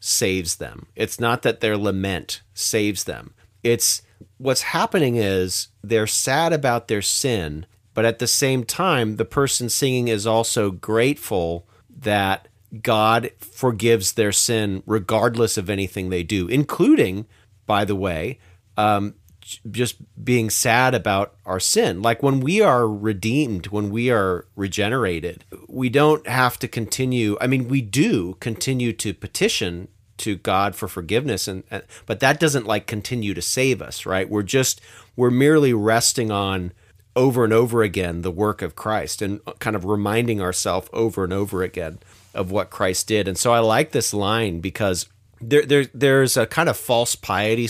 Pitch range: 95-120 Hz